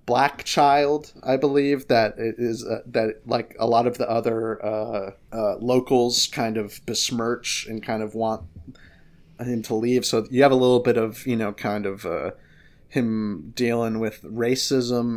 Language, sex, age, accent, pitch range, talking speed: English, male, 30-49, American, 110-135 Hz, 175 wpm